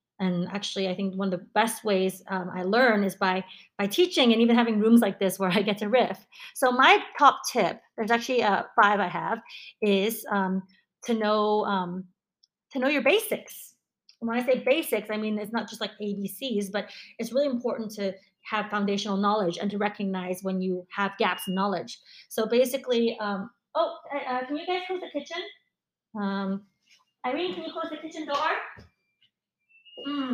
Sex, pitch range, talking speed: female, 195-245 Hz, 190 wpm